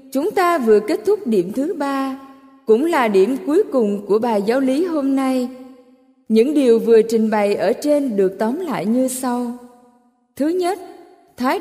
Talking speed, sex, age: 175 wpm, female, 20-39